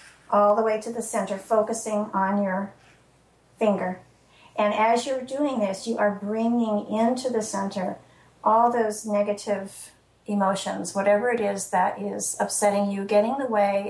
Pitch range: 195-220 Hz